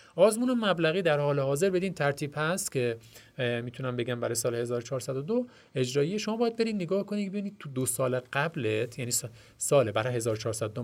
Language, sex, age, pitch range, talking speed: Persian, male, 40-59, 115-165 Hz, 160 wpm